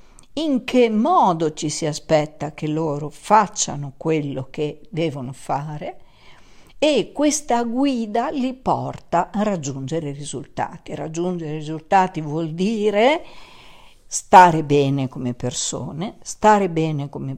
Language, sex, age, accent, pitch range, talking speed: Italian, female, 50-69, native, 150-205 Hz, 115 wpm